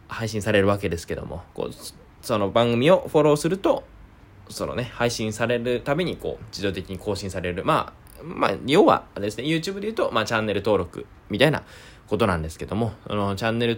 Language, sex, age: Japanese, male, 20-39